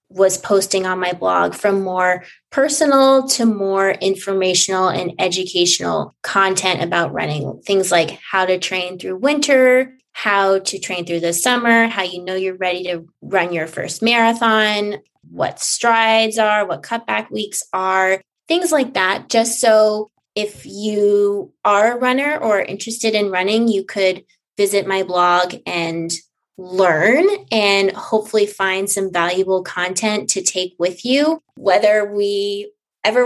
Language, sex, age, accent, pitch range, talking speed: English, female, 20-39, American, 185-230 Hz, 145 wpm